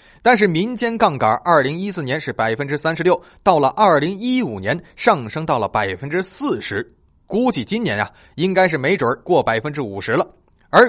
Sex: male